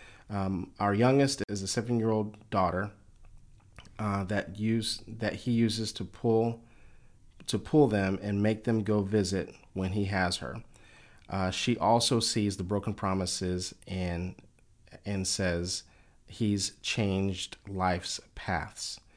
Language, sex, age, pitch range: English, male, 40-59, 95-115 Hz